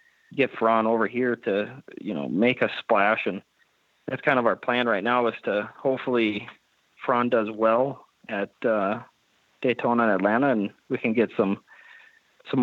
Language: English